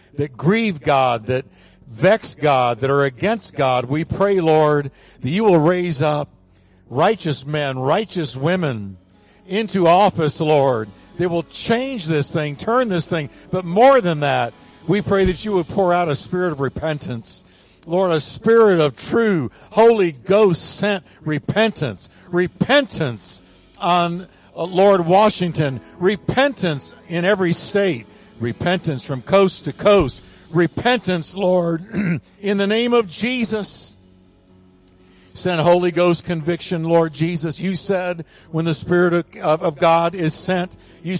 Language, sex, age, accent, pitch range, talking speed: English, male, 60-79, American, 135-185 Hz, 135 wpm